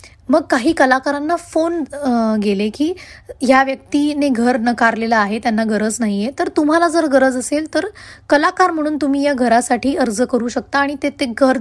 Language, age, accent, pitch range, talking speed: Marathi, 20-39, native, 225-285 Hz, 140 wpm